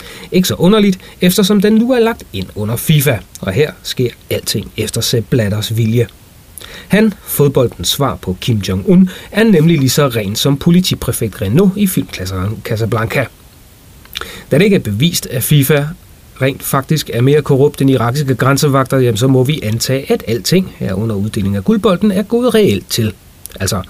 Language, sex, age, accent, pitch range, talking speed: Danish, male, 30-49, native, 110-175 Hz, 170 wpm